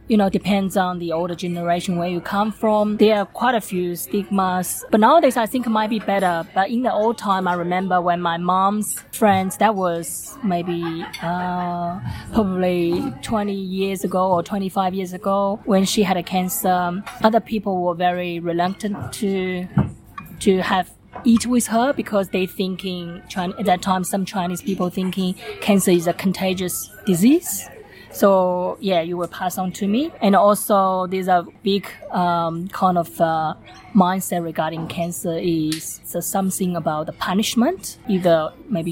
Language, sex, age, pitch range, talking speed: English, female, 20-39, 175-200 Hz, 165 wpm